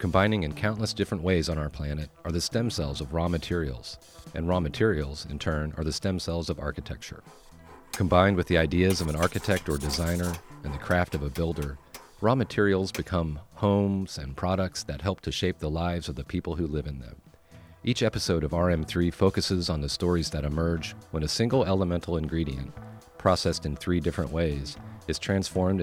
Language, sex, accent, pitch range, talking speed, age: English, male, American, 75-95 Hz, 190 wpm, 40-59